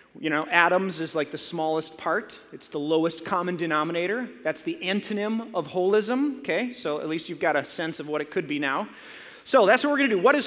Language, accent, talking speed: English, American, 235 wpm